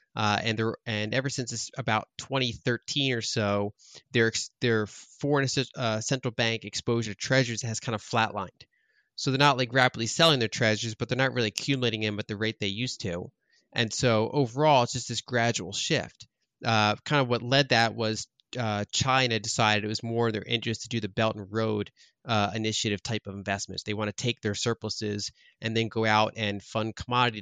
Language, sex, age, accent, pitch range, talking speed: English, male, 30-49, American, 105-125 Hz, 200 wpm